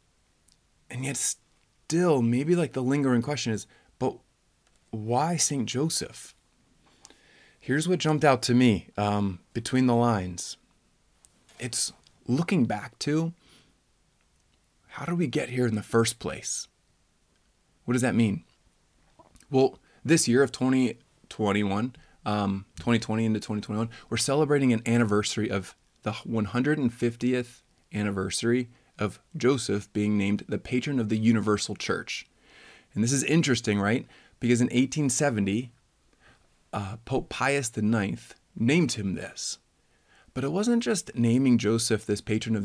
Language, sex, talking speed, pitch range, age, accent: English, male, 130 wpm, 105-130 Hz, 30-49, American